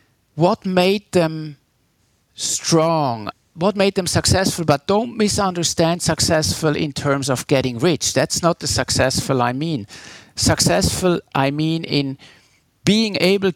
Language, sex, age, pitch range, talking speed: English, male, 50-69, 135-170 Hz, 130 wpm